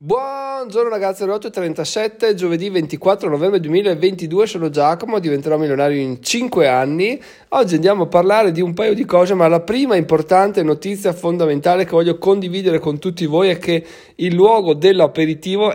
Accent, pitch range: native, 130-175 Hz